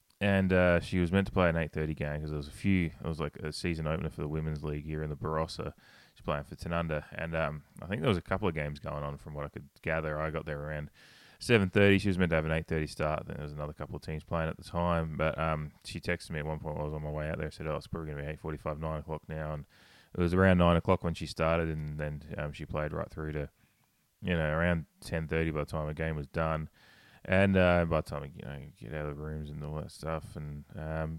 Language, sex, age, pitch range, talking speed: English, male, 20-39, 75-85 Hz, 285 wpm